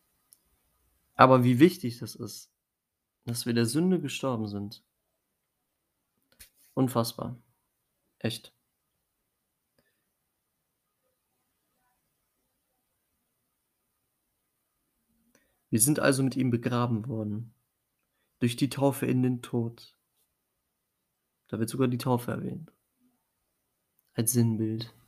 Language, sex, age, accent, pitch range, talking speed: German, male, 40-59, German, 115-135 Hz, 80 wpm